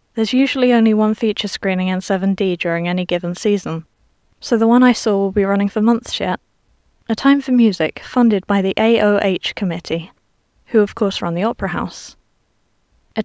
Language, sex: English, female